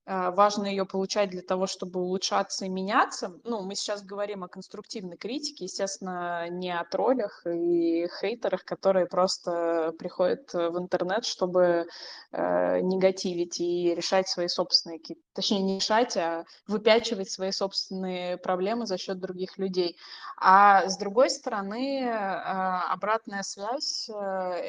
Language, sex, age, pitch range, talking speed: Russian, female, 20-39, 180-200 Hz, 125 wpm